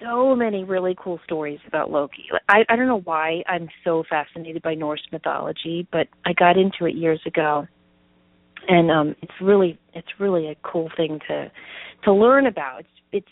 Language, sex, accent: English, female, American